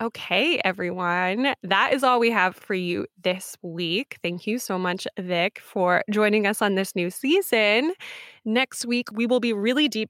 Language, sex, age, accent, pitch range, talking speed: English, female, 20-39, American, 185-230 Hz, 180 wpm